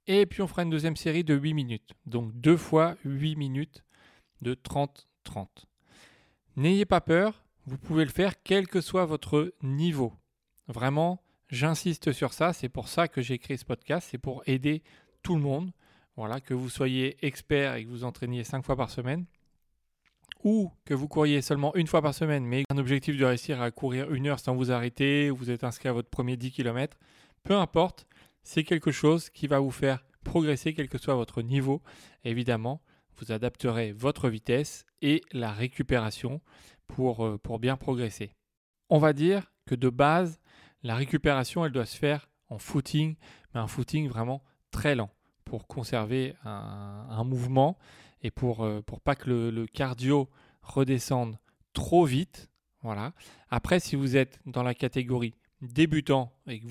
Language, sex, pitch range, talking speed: French, male, 125-155 Hz, 175 wpm